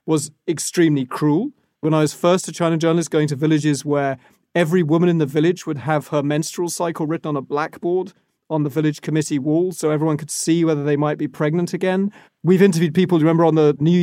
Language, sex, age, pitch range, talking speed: English, male, 30-49, 150-180 Hz, 215 wpm